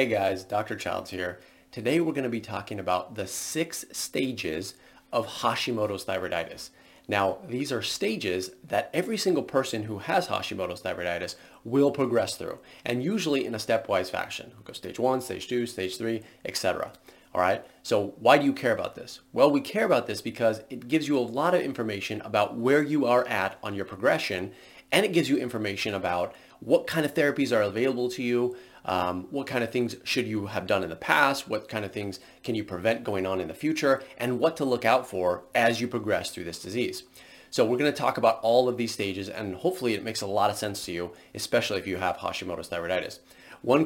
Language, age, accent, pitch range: English, 30-49, American, 100-135 Hz